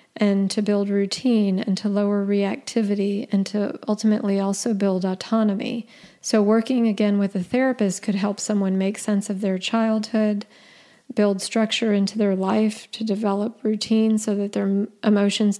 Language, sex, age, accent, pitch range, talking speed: English, female, 40-59, American, 200-225 Hz, 155 wpm